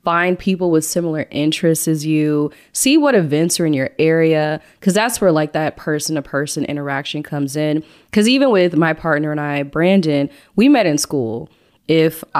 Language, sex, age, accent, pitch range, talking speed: English, female, 20-39, American, 150-195 Hz, 175 wpm